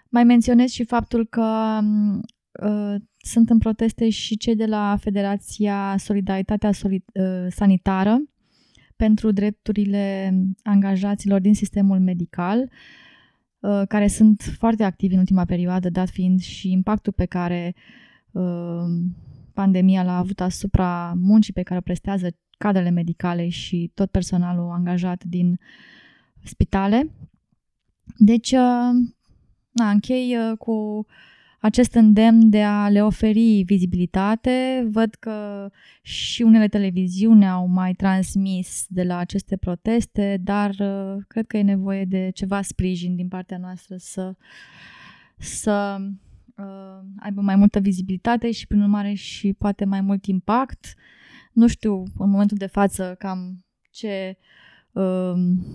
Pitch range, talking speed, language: 185-215 Hz, 125 wpm, Romanian